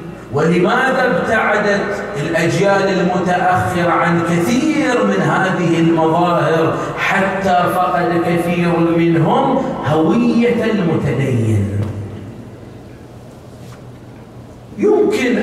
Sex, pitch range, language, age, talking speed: male, 145-210 Hz, Arabic, 40-59, 60 wpm